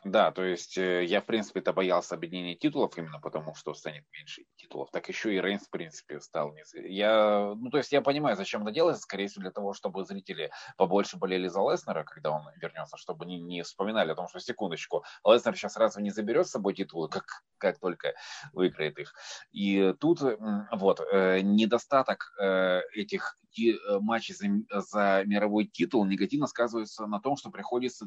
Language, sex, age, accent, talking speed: Russian, male, 20-39, native, 175 wpm